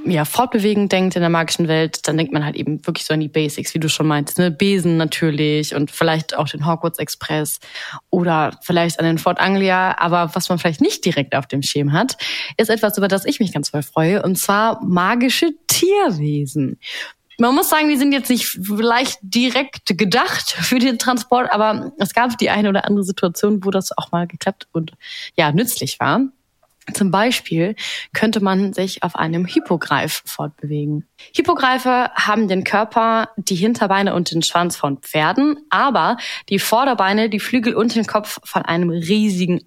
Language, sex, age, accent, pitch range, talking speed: German, female, 20-39, German, 165-225 Hz, 180 wpm